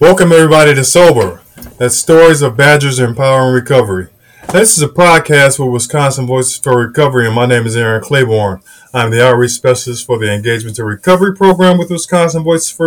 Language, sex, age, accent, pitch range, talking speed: English, male, 20-39, American, 120-160 Hz, 195 wpm